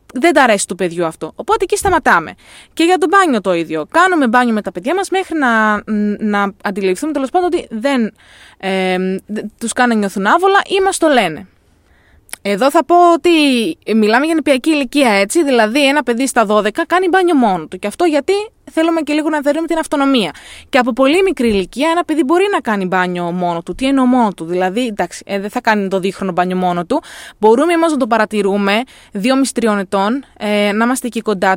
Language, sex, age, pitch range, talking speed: Greek, female, 20-39, 195-310 Hz, 200 wpm